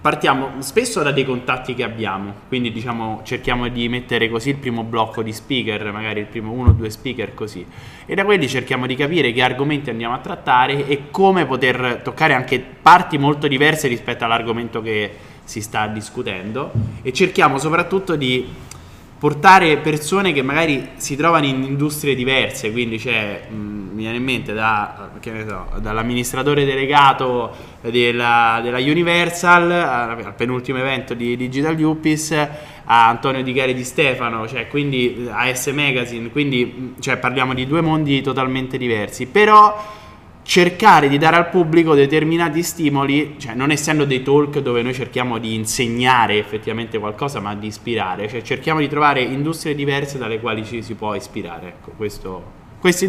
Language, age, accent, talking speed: Italian, 20-39, native, 160 wpm